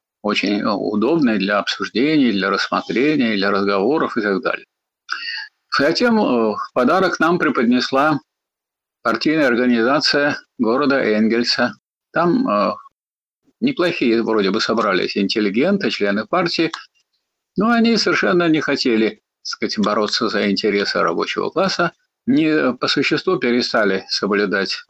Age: 50-69